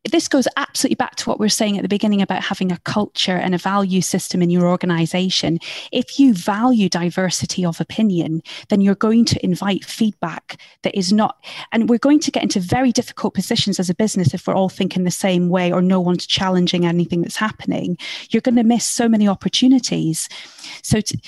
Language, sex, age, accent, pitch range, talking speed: English, female, 30-49, British, 180-230 Hz, 200 wpm